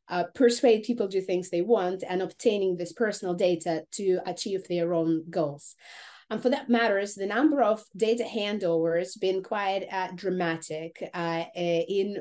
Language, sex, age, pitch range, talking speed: English, female, 30-49, 175-225 Hz, 165 wpm